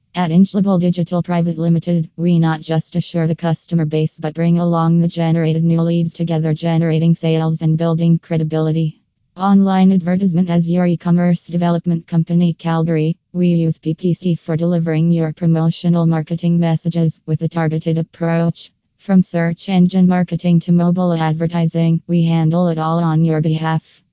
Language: English